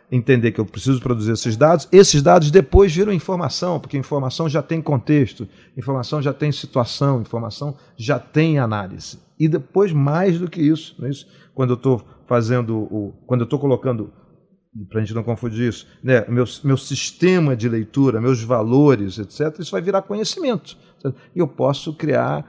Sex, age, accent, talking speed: male, 40-59, Brazilian, 170 wpm